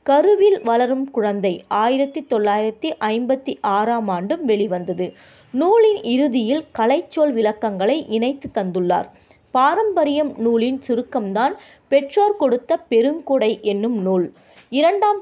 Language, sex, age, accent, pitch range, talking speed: Tamil, female, 20-39, native, 205-280 Hz, 95 wpm